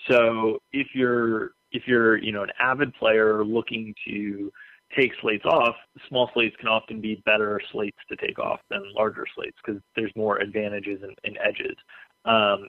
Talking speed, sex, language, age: 165 wpm, male, English, 30-49